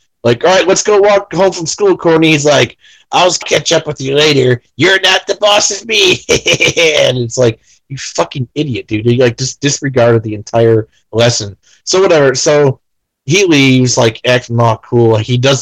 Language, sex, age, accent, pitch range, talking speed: English, male, 30-49, American, 115-145 Hz, 185 wpm